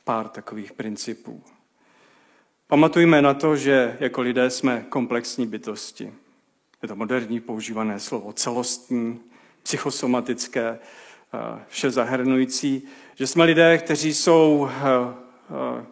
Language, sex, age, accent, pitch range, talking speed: Czech, male, 40-59, native, 125-150 Hz, 100 wpm